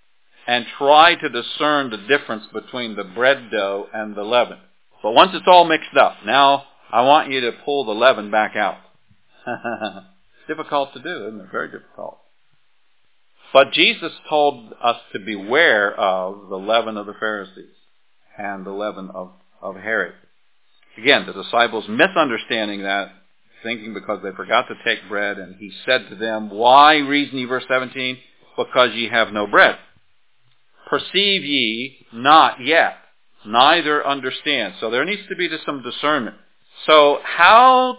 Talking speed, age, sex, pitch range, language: 155 wpm, 50-69, male, 110-145 Hz, English